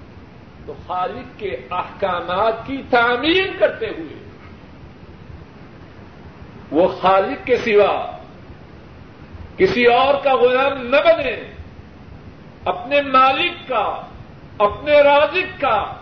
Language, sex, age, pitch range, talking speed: Urdu, male, 50-69, 195-295 Hz, 90 wpm